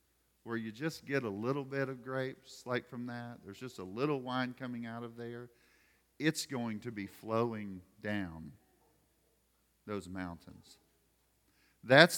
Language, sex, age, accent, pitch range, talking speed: English, male, 40-59, American, 115-145 Hz, 150 wpm